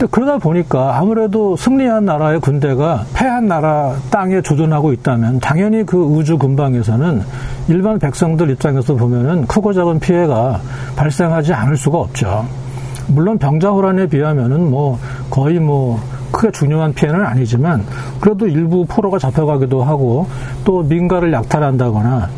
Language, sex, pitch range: Korean, male, 125-175 Hz